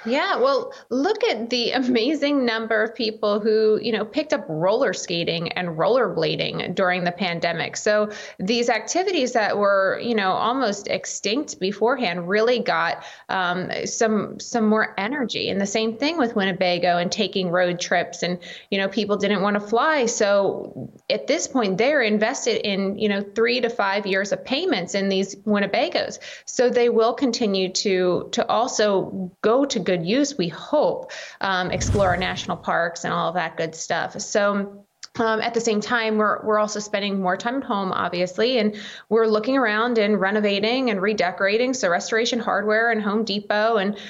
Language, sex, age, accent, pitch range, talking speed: English, female, 20-39, American, 195-235 Hz, 175 wpm